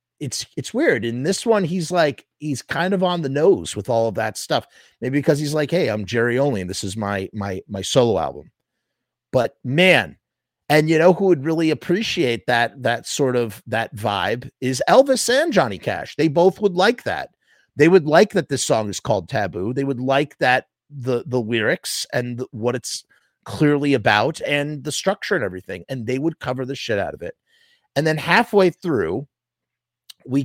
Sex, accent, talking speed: male, American, 195 wpm